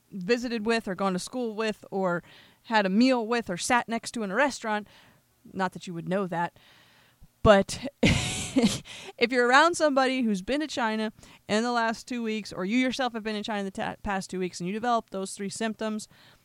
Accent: American